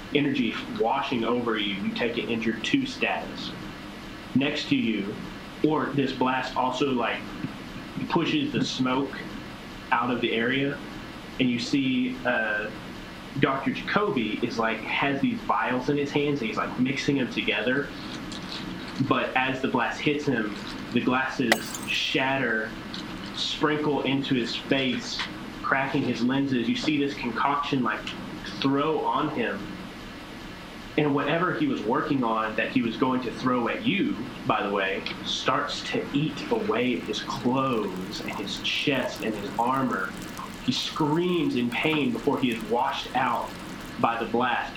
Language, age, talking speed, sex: English, 20-39, 150 wpm, male